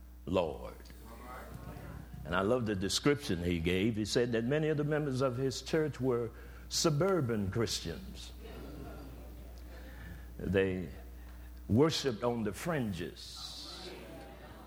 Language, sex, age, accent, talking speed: English, male, 60-79, American, 105 wpm